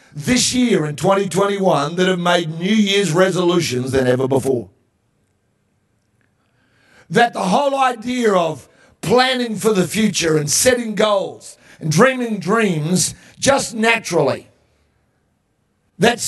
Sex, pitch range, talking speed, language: male, 150-200 Hz, 115 wpm, English